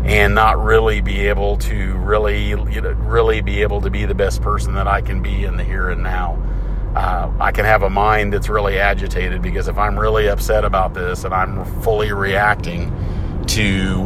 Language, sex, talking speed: English, male, 200 wpm